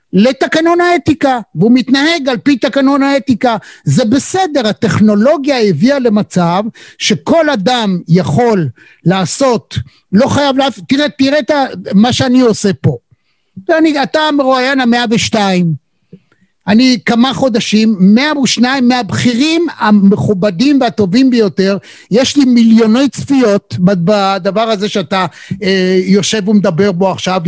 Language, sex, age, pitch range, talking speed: Hebrew, male, 50-69, 205-265 Hz, 110 wpm